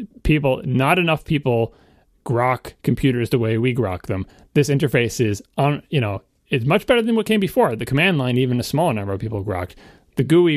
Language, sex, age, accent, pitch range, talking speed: English, male, 30-49, American, 120-165 Hz, 200 wpm